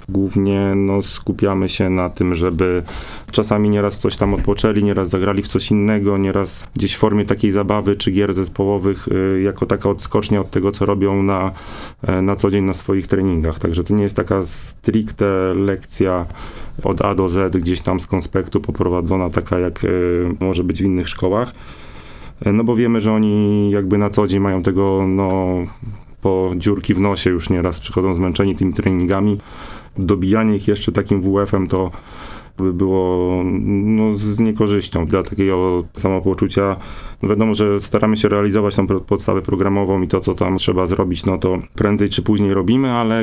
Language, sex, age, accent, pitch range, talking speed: Polish, male, 30-49, native, 95-105 Hz, 170 wpm